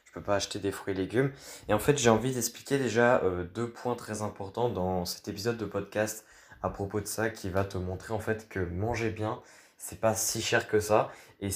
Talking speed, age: 225 wpm, 20-39